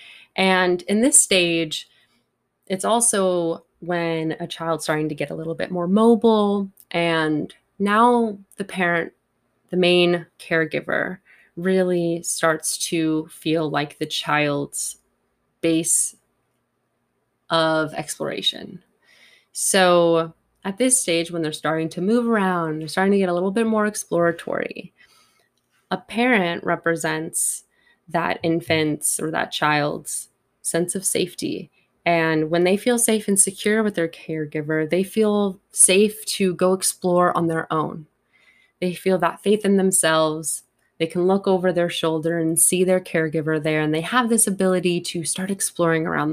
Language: English